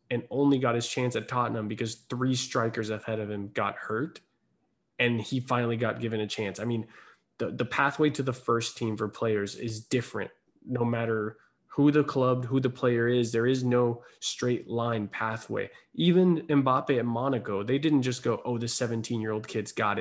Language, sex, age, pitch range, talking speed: English, male, 20-39, 110-130 Hz, 195 wpm